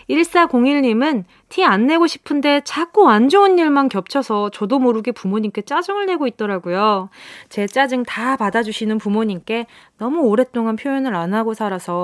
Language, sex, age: Korean, female, 20-39